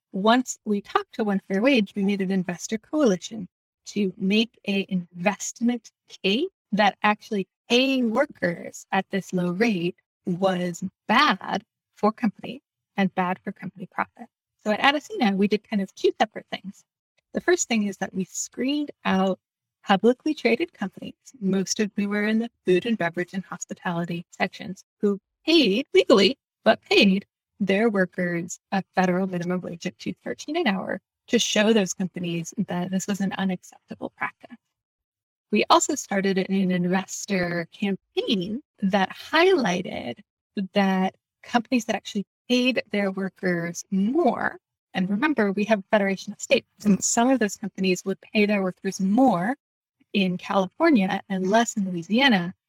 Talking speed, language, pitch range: 150 wpm, English, 190-235 Hz